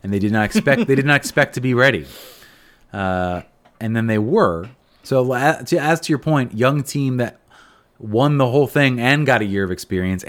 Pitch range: 100-135 Hz